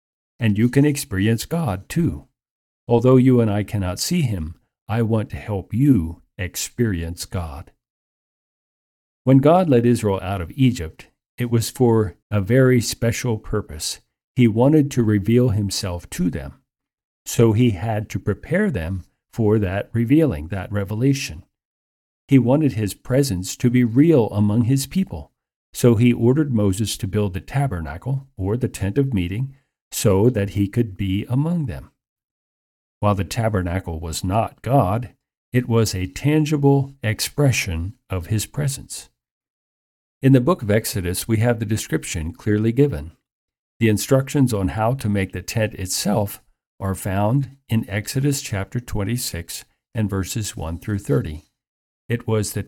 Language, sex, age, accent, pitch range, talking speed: English, male, 50-69, American, 95-125 Hz, 150 wpm